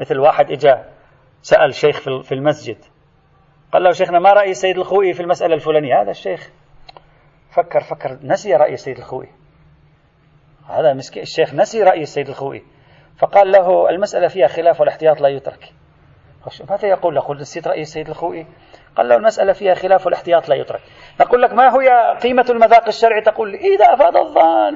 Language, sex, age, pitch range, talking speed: Arabic, male, 40-59, 155-230 Hz, 160 wpm